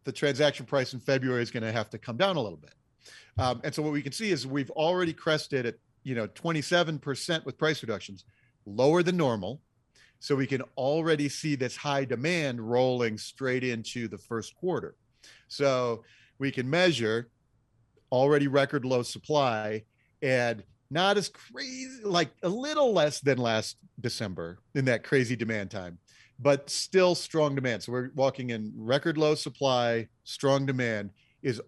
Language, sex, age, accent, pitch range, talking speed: English, male, 40-59, American, 120-145 Hz, 165 wpm